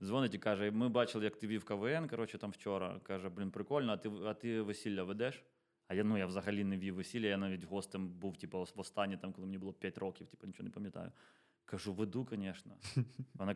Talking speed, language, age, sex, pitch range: 215 wpm, Ukrainian, 20-39, male, 100-130 Hz